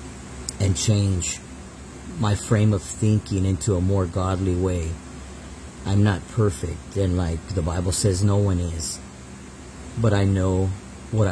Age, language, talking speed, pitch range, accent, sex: 40-59, English, 140 wpm, 85-100 Hz, American, male